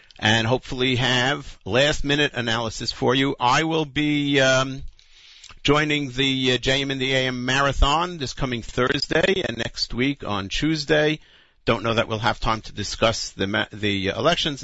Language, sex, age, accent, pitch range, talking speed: English, male, 50-69, American, 115-155 Hz, 160 wpm